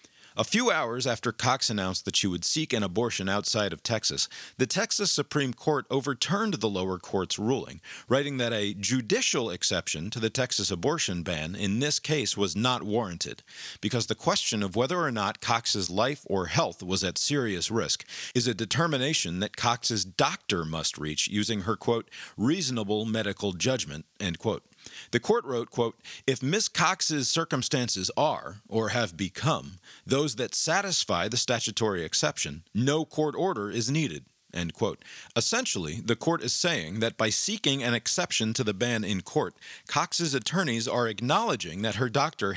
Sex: male